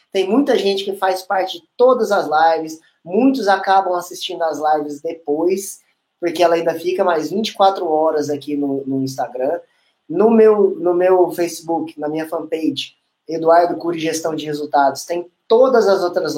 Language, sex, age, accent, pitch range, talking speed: Portuguese, male, 20-39, Brazilian, 155-205 Hz, 160 wpm